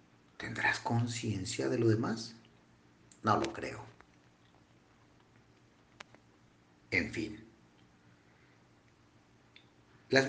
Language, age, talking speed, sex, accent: Spanish, 50-69, 65 wpm, male, Mexican